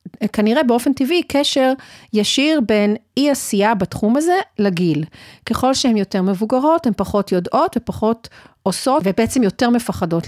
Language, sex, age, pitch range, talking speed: Hebrew, female, 40-59, 195-260 Hz, 135 wpm